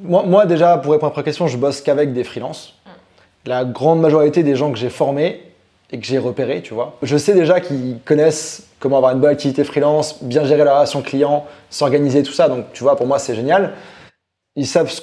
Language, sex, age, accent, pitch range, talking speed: French, male, 20-39, French, 130-165 Hz, 220 wpm